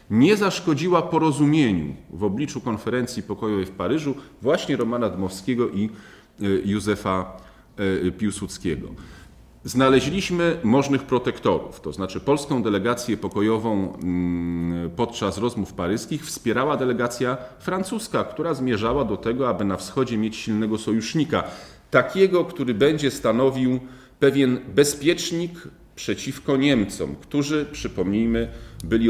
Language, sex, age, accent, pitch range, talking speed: Polish, male, 40-59, native, 100-135 Hz, 105 wpm